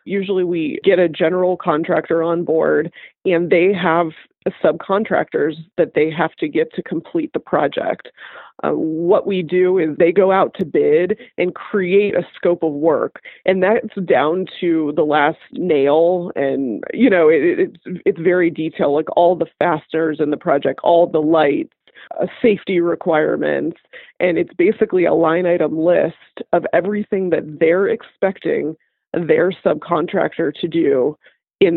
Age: 20-39